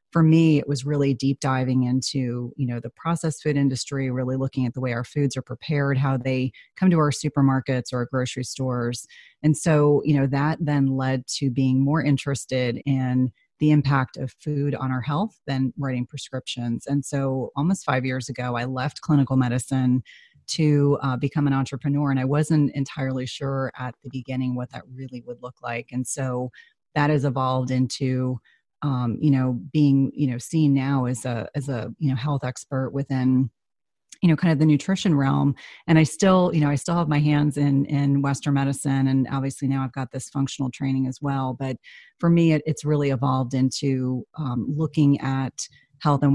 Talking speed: 195 wpm